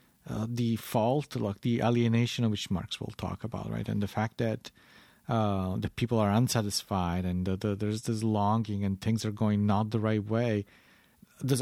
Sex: male